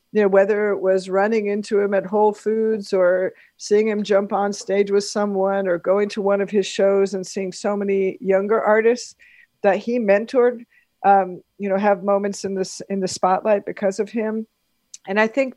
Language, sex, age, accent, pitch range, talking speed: English, female, 50-69, American, 185-220 Hz, 195 wpm